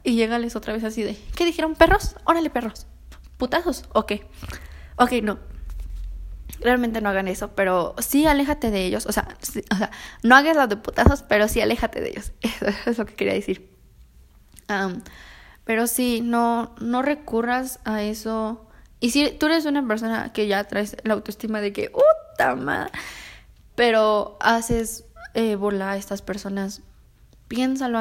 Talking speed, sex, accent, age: 165 wpm, female, Mexican, 10-29